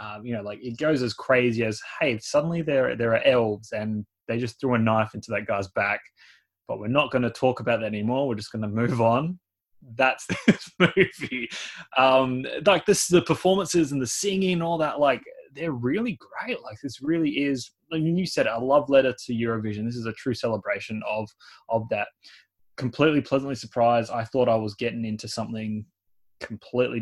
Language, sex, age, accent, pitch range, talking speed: English, male, 20-39, Australian, 110-135 Hz, 195 wpm